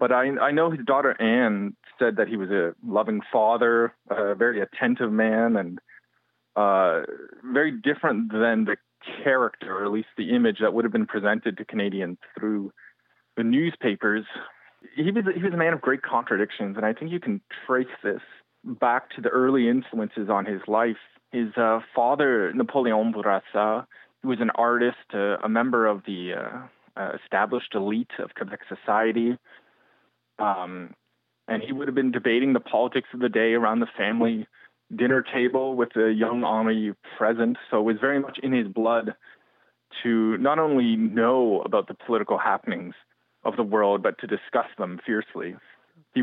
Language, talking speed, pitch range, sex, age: English, 170 wpm, 110-130 Hz, male, 30-49